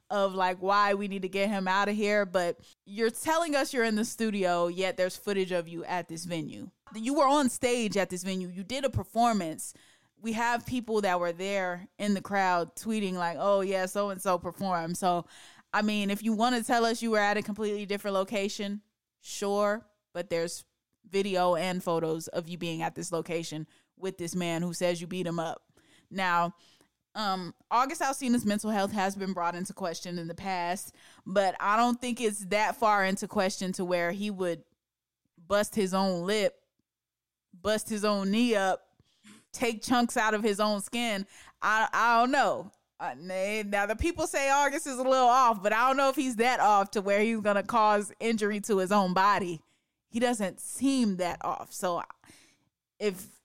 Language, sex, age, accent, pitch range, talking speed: English, female, 20-39, American, 185-225 Hz, 195 wpm